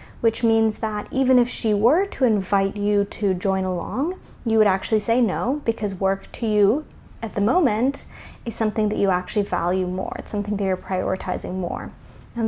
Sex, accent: female, American